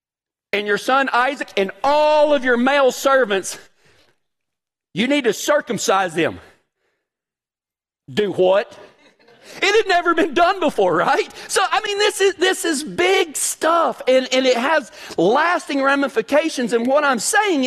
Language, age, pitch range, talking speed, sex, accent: English, 40-59, 205-320 Hz, 145 wpm, male, American